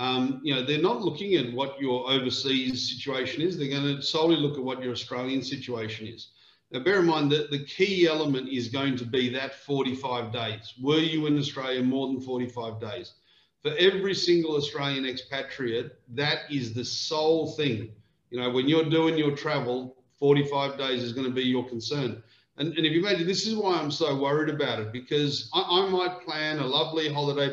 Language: English